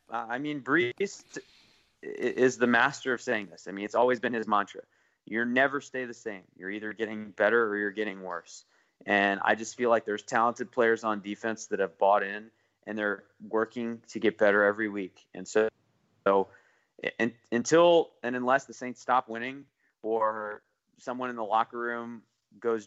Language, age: English, 20-39